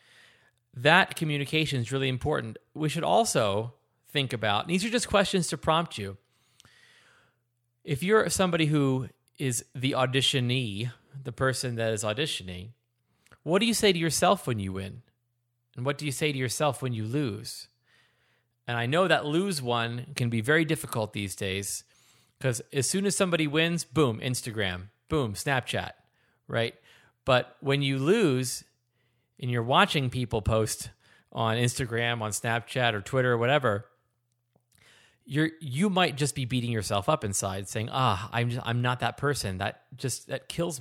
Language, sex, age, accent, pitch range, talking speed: English, male, 30-49, American, 115-155 Hz, 160 wpm